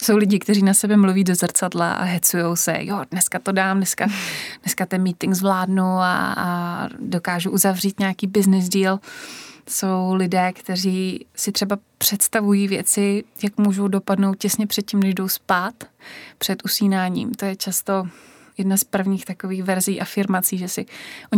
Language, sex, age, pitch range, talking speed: Slovak, female, 20-39, 180-200 Hz, 160 wpm